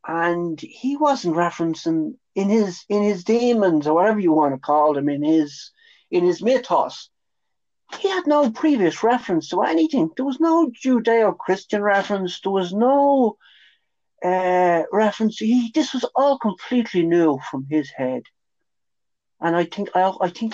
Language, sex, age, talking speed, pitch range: English, male, 60-79, 155 wpm, 135-220 Hz